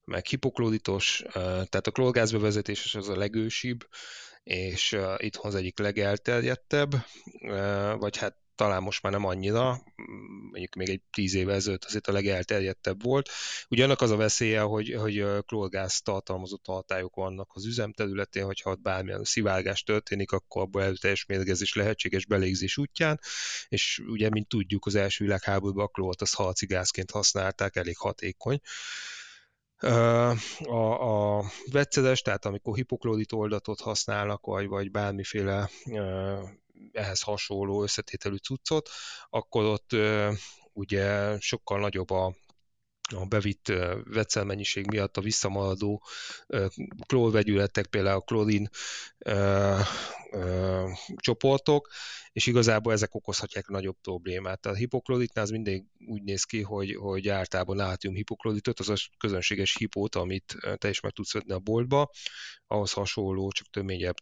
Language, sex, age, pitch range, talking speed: Hungarian, male, 20-39, 95-110 Hz, 130 wpm